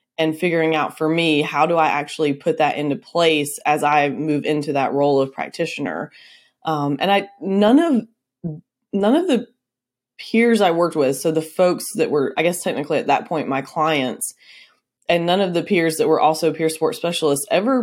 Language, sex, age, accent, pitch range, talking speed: English, female, 20-39, American, 150-175 Hz, 195 wpm